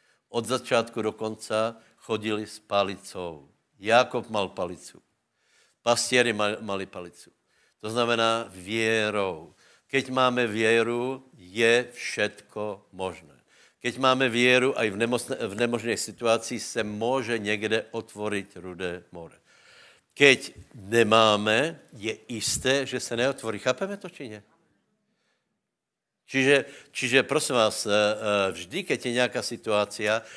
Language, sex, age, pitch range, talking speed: Slovak, male, 70-89, 105-115 Hz, 115 wpm